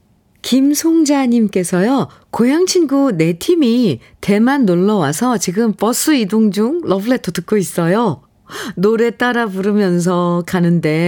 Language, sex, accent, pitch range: Korean, female, native, 170-245 Hz